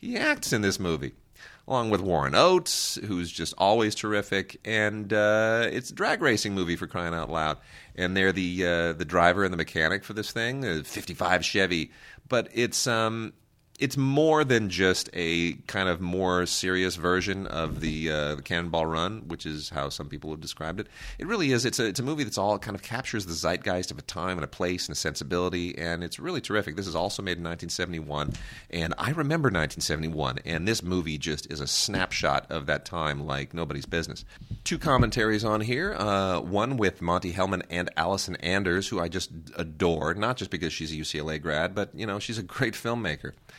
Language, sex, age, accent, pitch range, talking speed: English, male, 30-49, American, 80-105 Hz, 200 wpm